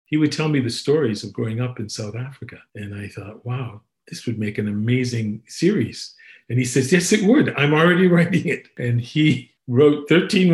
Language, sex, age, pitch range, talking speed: English, male, 50-69, 110-130 Hz, 205 wpm